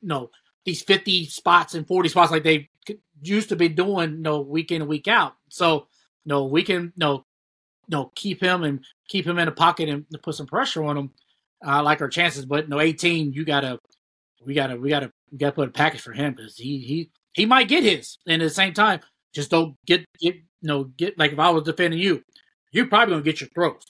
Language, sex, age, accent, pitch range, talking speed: English, male, 20-39, American, 140-170 Hz, 260 wpm